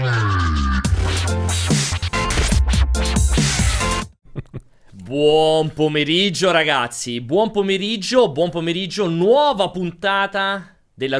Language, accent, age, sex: Italian, native, 30-49, male